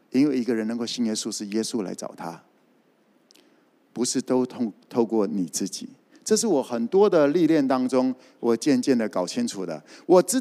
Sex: male